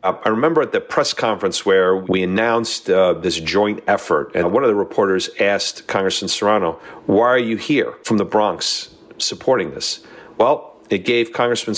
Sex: male